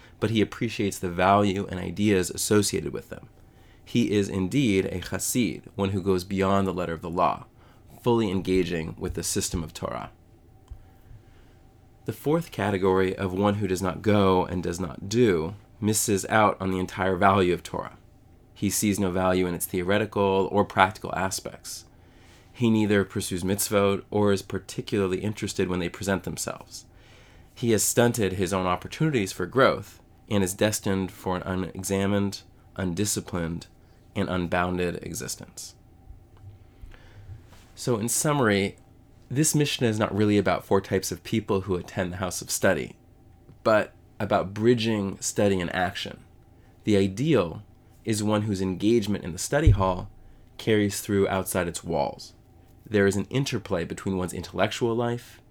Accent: American